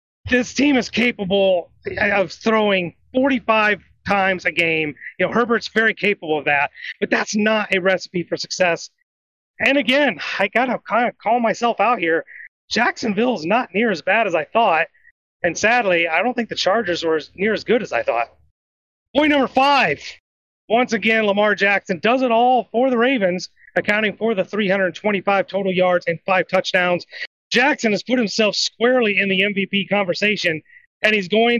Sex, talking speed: male, 175 wpm